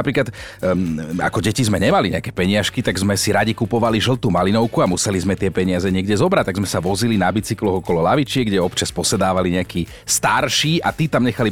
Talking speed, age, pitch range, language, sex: 205 wpm, 40-59, 100-130 Hz, Slovak, male